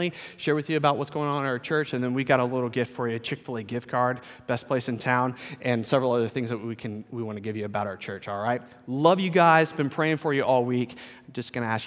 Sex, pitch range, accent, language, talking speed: male, 110-135 Hz, American, English, 290 wpm